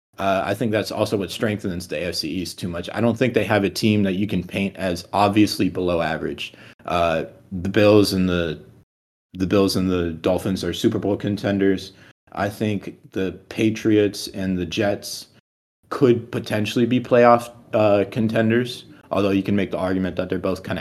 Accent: American